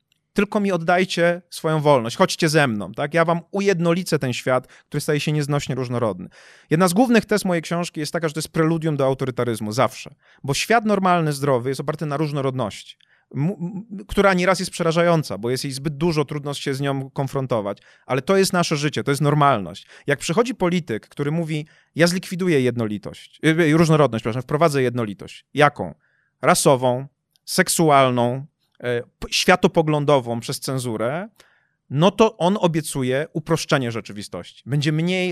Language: Polish